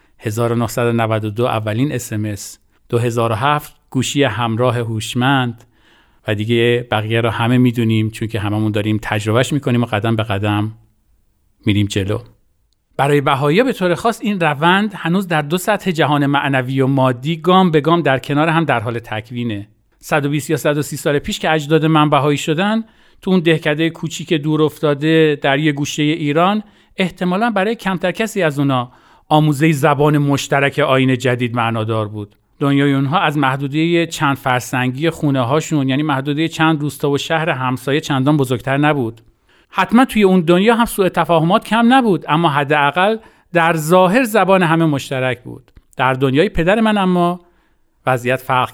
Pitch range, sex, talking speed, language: 120-165 Hz, male, 155 wpm, Persian